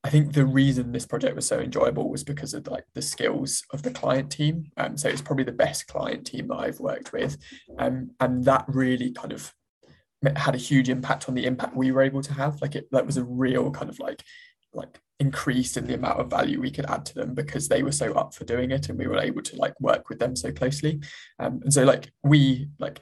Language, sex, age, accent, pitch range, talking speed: English, male, 20-39, British, 130-145 Hz, 250 wpm